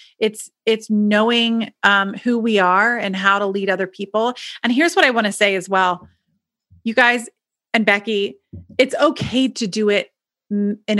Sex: female